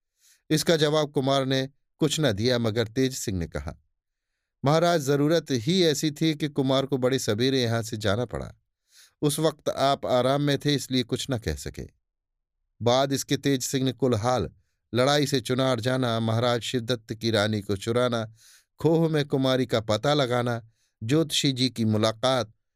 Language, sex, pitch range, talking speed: Hindi, male, 110-145 Hz, 165 wpm